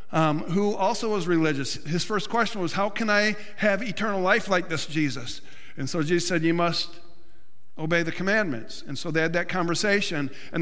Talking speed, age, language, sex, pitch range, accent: 190 wpm, 50-69, English, male, 165-200 Hz, American